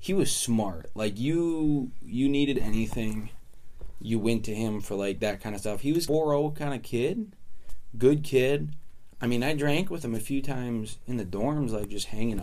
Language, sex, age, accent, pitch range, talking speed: English, male, 20-39, American, 100-125 Hz, 205 wpm